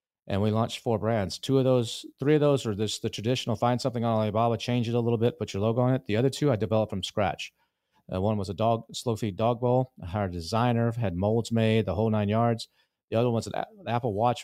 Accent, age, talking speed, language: American, 40-59, 260 wpm, English